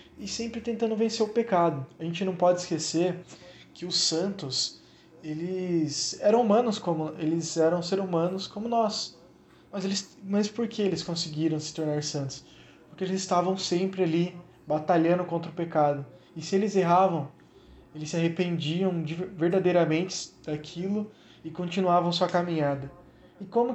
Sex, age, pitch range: male, 20-39, 155-185 Hz